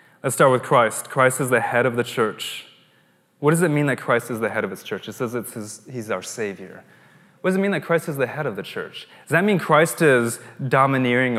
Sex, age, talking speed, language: male, 20-39, 240 wpm, English